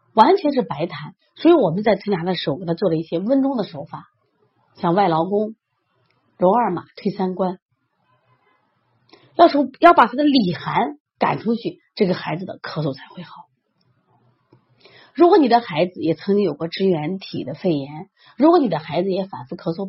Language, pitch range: Chinese, 170-250 Hz